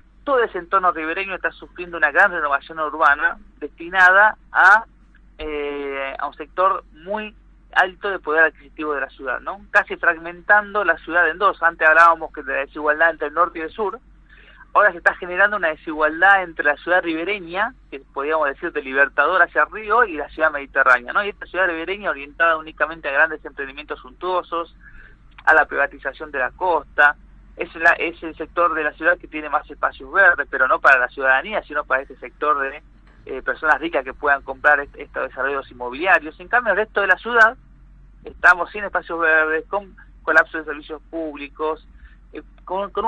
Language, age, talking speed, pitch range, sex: Spanish, 40-59, 185 wpm, 150-190 Hz, male